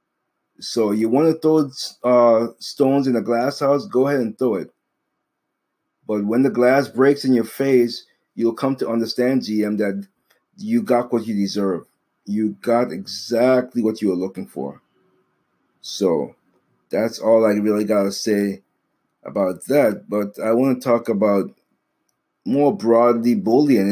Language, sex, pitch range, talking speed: English, male, 110-130 Hz, 150 wpm